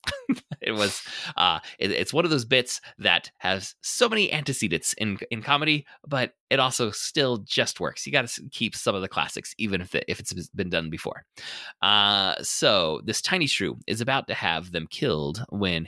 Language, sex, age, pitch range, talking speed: English, male, 30-49, 90-120 Hz, 195 wpm